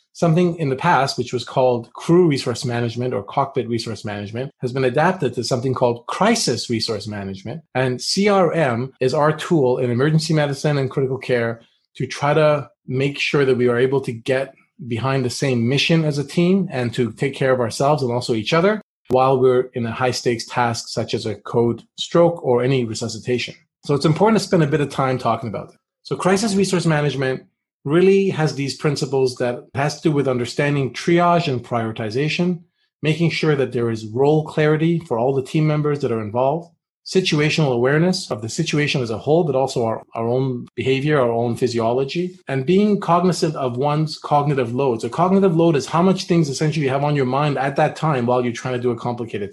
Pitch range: 125-165 Hz